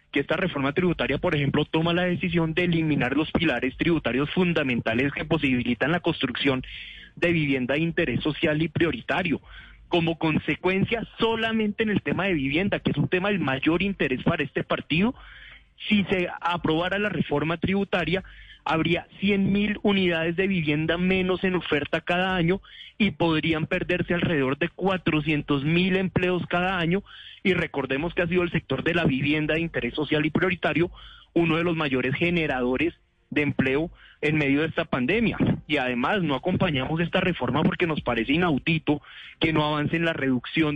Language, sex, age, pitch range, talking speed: Spanish, male, 30-49, 145-180 Hz, 165 wpm